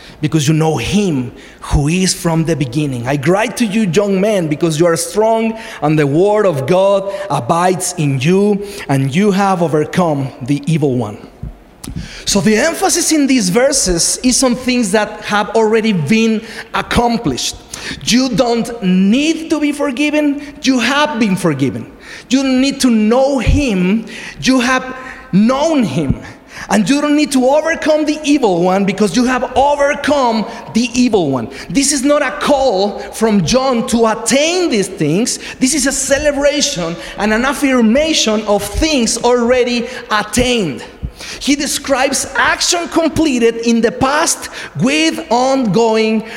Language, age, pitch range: English, 40-59, 195-270 Hz